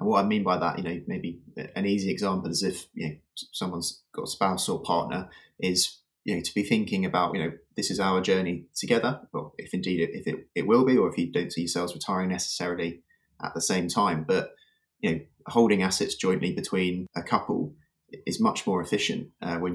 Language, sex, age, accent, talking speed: English, male, 20-39, British, 220 wpm